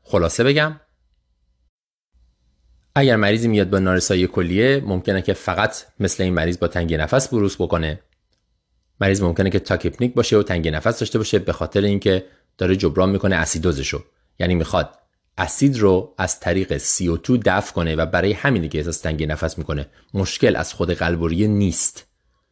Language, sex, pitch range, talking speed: Persian, male, 85-115 Hz, 155 wpm